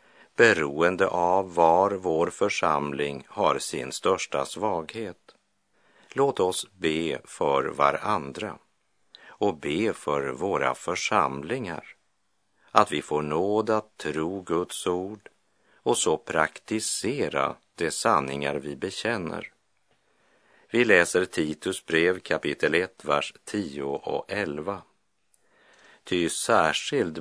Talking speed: 100 wpm